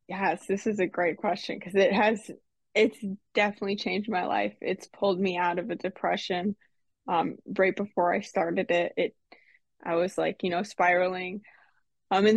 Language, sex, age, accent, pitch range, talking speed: English, female, 20-39, American, 180-200 Hz, 175 wpm